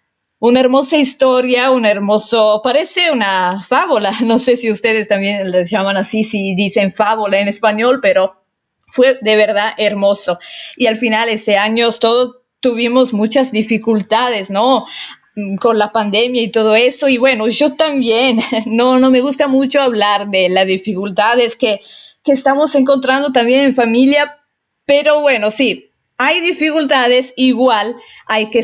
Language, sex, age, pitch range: English, female, 20-39, 210-260 Hz